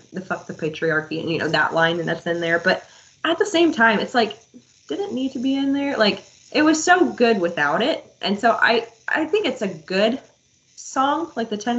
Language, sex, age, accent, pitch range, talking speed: English, female, 20-39, American, 180-260 Hz, 230 wpm